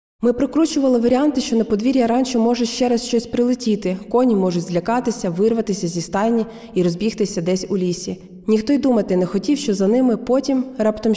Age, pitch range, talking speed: 20-39, 185-230 Hz, 175 wpm